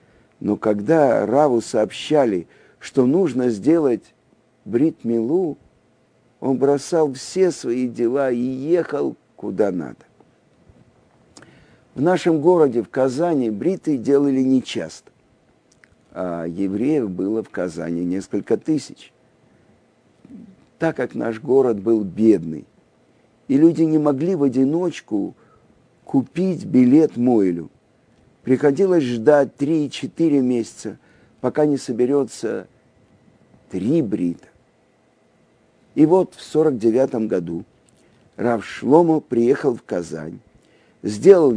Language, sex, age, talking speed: Russian, male, 50-69, 100 wpm